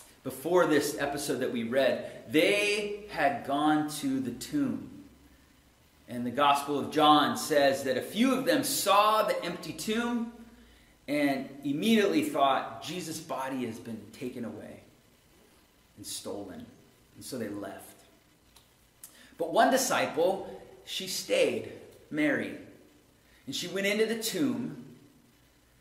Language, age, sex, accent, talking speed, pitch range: English, 30-49, male, American, 125 wpm, 130-220 Hz